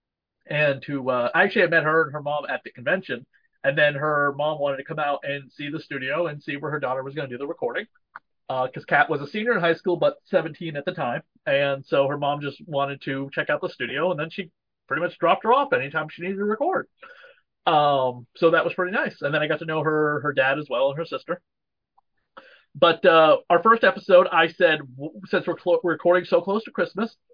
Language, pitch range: English, 155-235 Hz